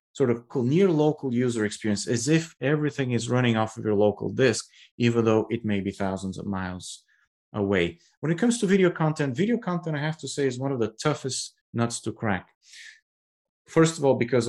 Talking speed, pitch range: 205 wpm, 105-135 Hz